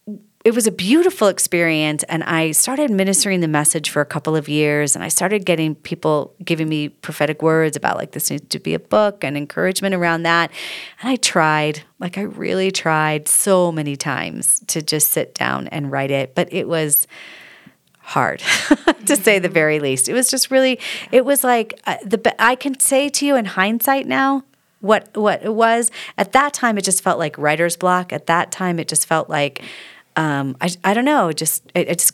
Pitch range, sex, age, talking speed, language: 155-225 Hz, female, 40-59, 205 wpm, English